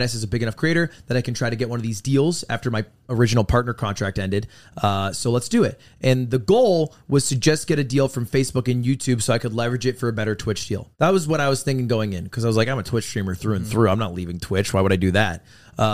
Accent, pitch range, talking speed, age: American, 110-135 Hz, 290 wpm, 20-39